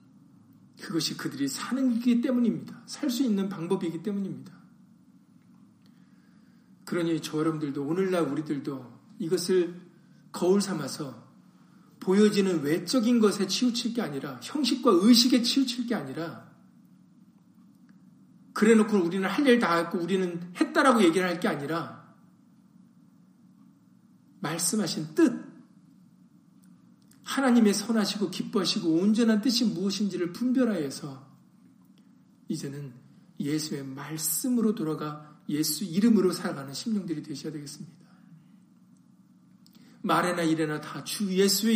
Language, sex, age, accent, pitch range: Korean, male, 40-59, native, 170-220 Hz